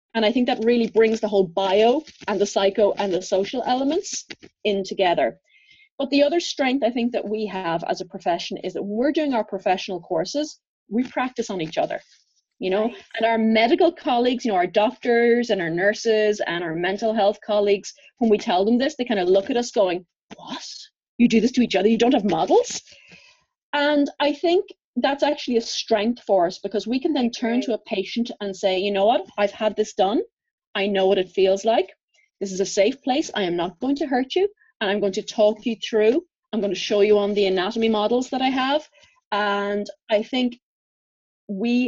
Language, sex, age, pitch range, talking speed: English, female, 30-49, 200-255 Hz, 215 wpm